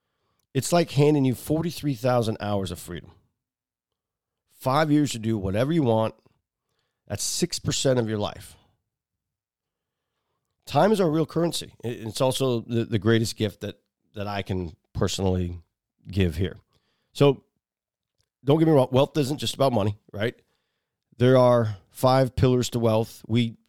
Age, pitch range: 40-59, 100-125 Hz